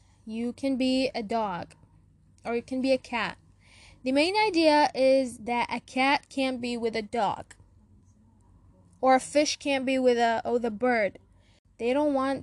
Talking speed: 175 wpm